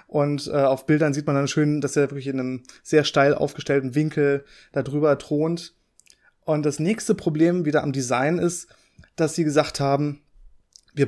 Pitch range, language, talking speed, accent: 140-160 Hz, German, 175 wpm, German